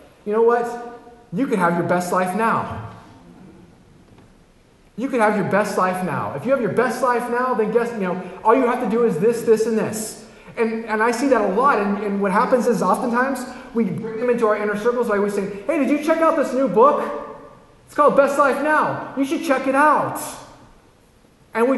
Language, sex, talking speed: English, male, 225 wpm